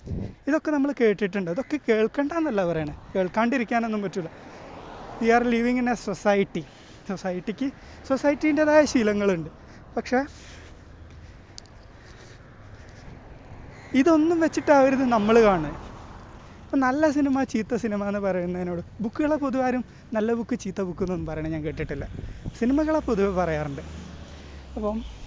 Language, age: Malayalam, 20-39